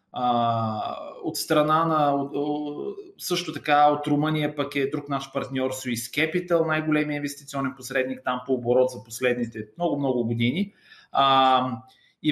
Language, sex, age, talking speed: Bulgarian, male, 30-49, 120 wpm